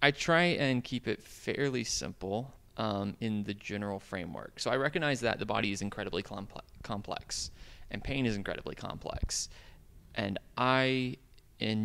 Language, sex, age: English, male, 20-39